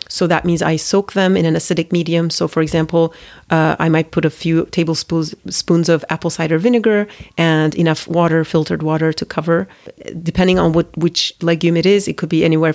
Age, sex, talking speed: 40-59, female, 200 wpm